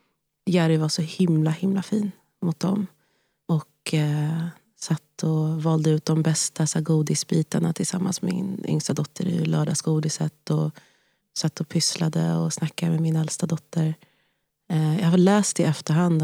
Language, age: Swedish, 30-49